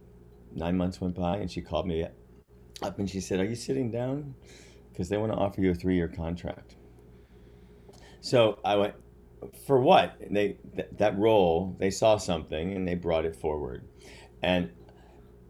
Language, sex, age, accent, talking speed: English, male, 40-59, American, 165 wpm